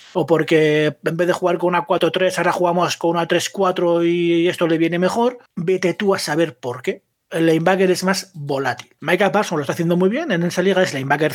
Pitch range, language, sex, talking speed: 155-185 Hz, Spanish, male, 235 wpm